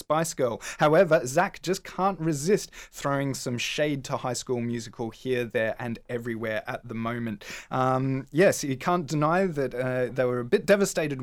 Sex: male